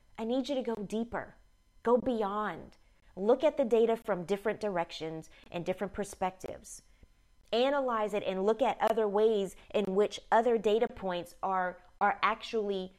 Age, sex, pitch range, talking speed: 30-49, female, 180-225 Hz, 150 wpm